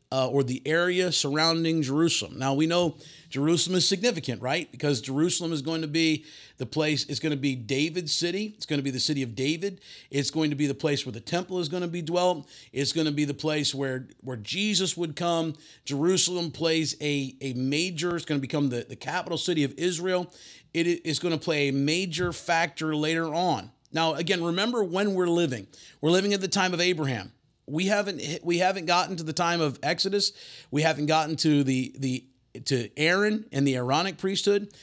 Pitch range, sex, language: 140-180 Hz, male, English